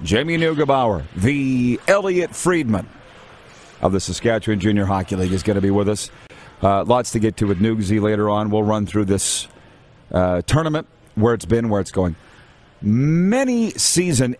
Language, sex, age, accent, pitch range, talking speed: English, male, 40-59, American, 105-135 Hz, 165 wpm